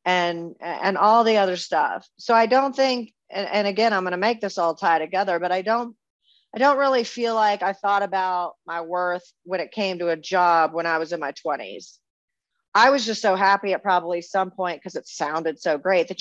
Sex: female